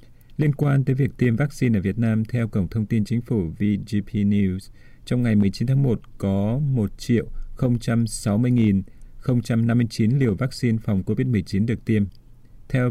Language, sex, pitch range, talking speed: Vietnamese, male, 105-120 Hz, 145 wpm